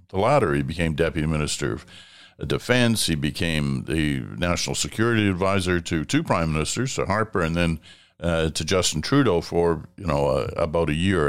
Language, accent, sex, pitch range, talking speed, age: English, American, male, 80-100 Hz, 175 wpm, 60-79